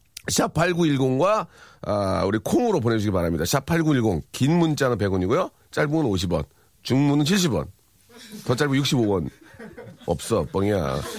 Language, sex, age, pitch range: Korean, male, 40-59, 105-165 Hz